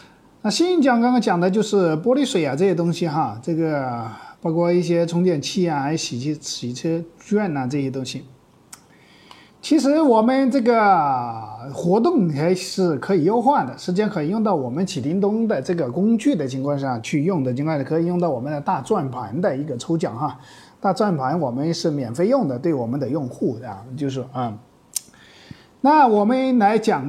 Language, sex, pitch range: Chinese, male, 150-225 Hz